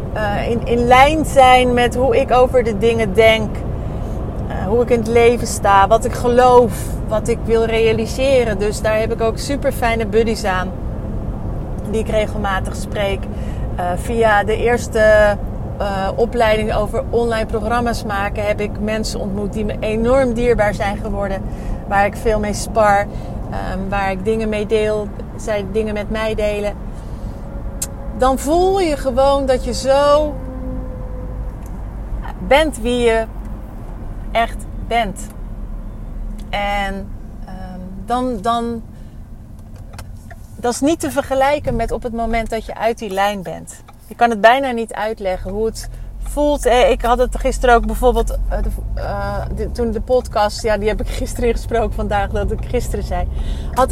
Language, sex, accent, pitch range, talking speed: Dutch, female, Dutch, 195-245 Hz, 155 wpm